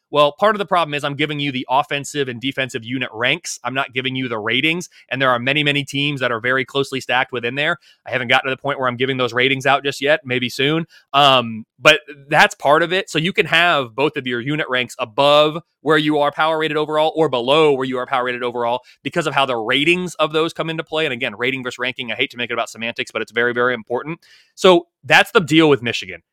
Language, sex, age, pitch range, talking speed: English, male, 30-49, 125-155 Hz, 260 wpm